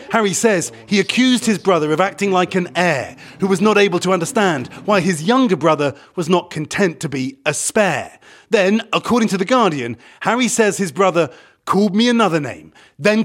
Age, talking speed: 30-49, 190 wpm